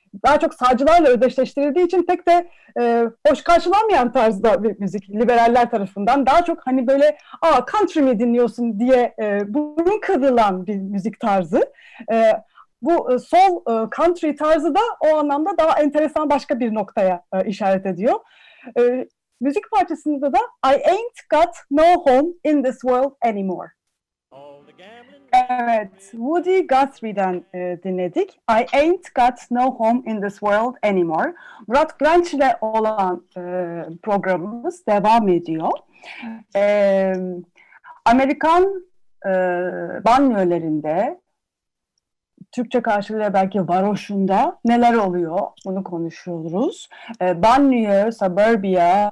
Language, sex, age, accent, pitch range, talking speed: Turkish, female, 40-59, native, 200-300 Hz, 120 wpm